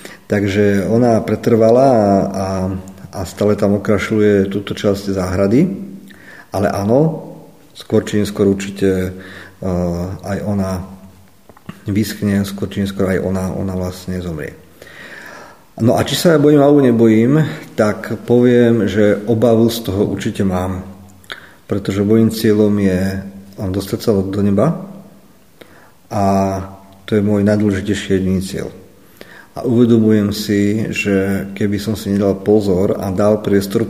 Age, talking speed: 50-69, 125 wpm